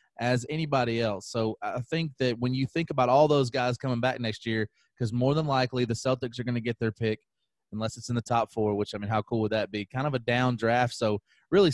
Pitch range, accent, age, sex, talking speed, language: 115-130 Hz, American, 30-49, male, 260 wpm, English